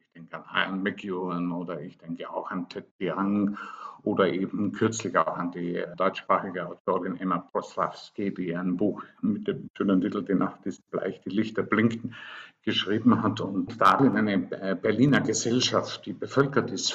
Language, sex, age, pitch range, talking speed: German, male, 50-69, 95-120 Hz, 160 wpm